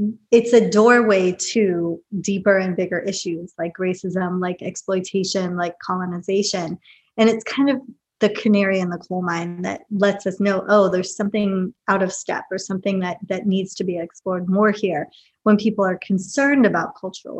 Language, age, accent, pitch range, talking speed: English, 30-49, American, 185-225 Hz, 170 wpm